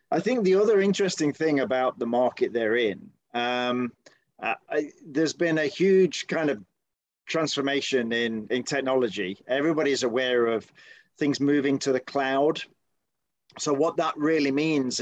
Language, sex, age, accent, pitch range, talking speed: English, male, 40-59, British, 120-145 Hz, 140 wpm